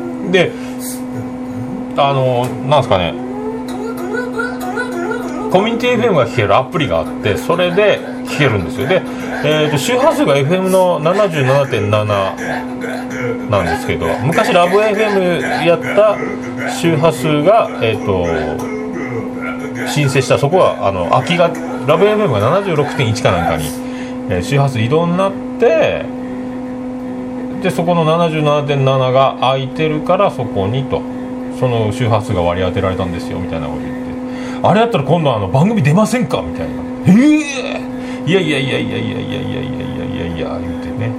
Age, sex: 40-59, male